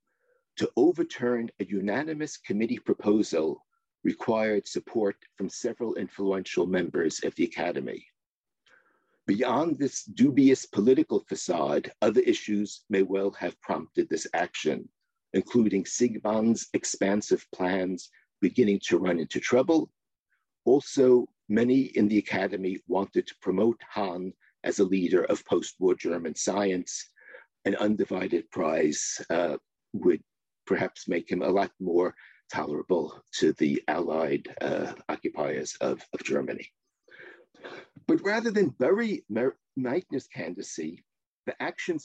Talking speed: 115 wpm